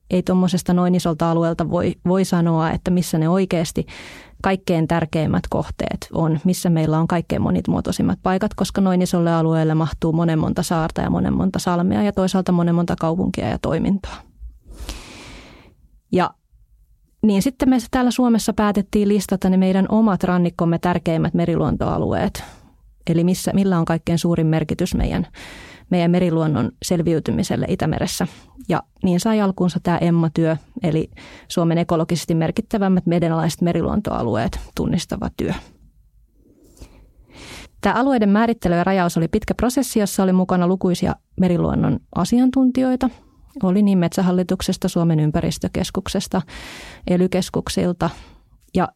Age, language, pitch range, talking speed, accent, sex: 20-39, Finnish, 165-195 Hz, 125 wpm, native, female